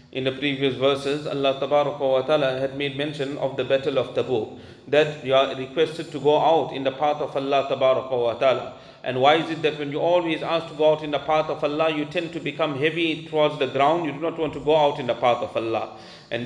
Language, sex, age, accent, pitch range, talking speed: English, male, 40-59, Indian, 155-195 Hz, 245 wpm